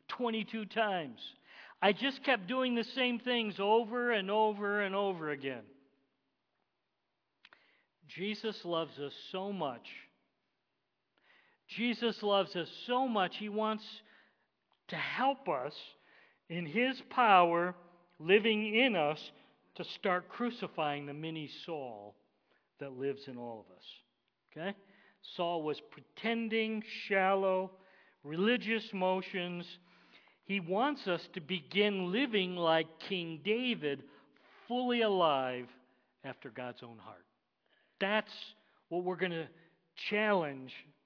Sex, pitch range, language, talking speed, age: male, 150-215 Hz, English, 110 wpm, 50-69